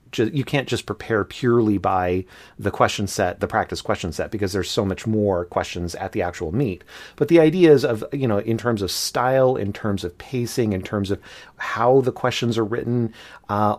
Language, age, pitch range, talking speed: English, 30-49, 95-120 Hz, 200 wpm